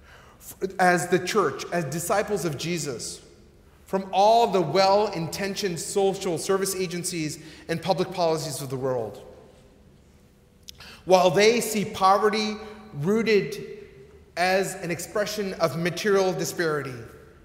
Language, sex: English, male